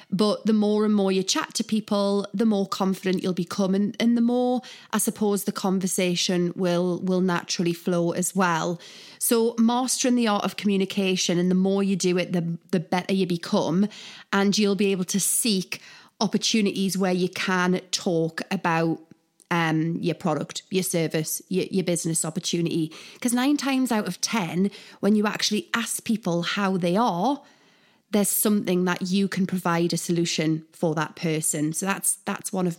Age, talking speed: 30-49, 175 wpm